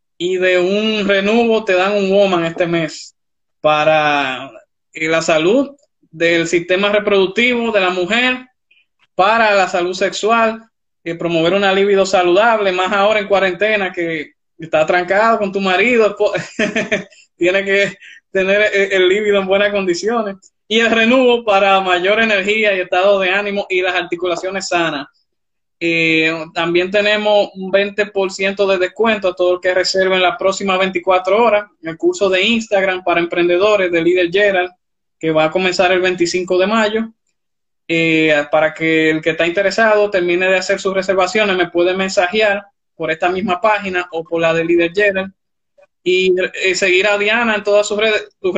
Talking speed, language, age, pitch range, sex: 160 wpm, Spanish, 20-39, 180-210 Hz, male